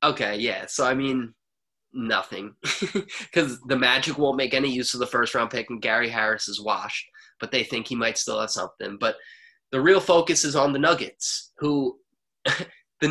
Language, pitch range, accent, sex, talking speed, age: English, 125-175 Hz, American, male, 185 wpm, 20-39